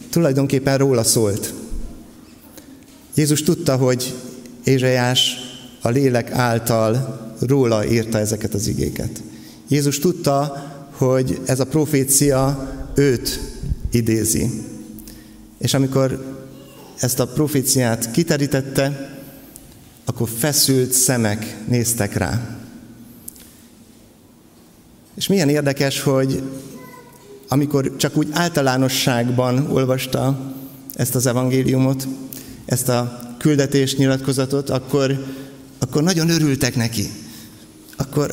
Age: 50-69